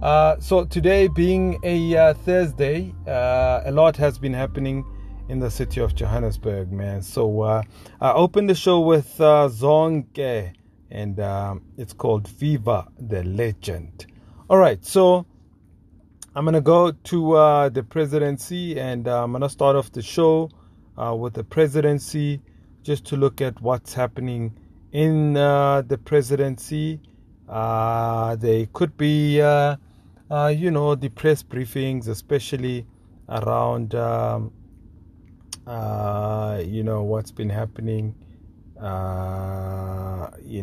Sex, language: male, English